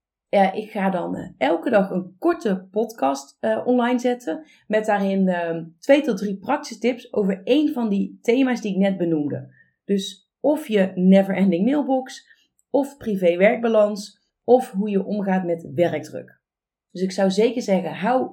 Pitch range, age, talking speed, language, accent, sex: 185-245 Hz, 30-49, 160 wpm, Dutch, Dutch, female